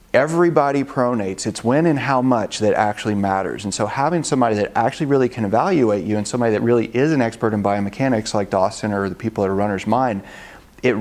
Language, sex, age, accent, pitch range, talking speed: English, male, 40-59, American, 105-125 Hz, 215 wpm